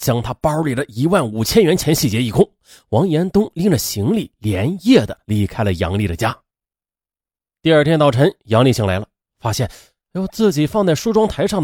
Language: Chinese